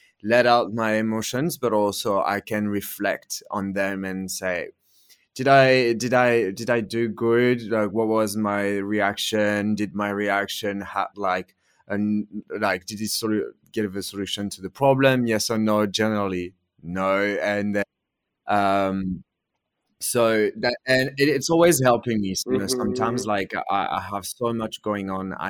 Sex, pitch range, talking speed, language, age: male, 95-115 Hz, 165 wpm, English, 20-39